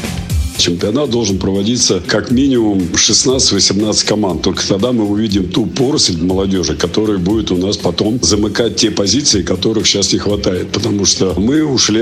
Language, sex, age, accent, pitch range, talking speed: Russian, male, 50-69, native, 95-115 Hz, 150 wpm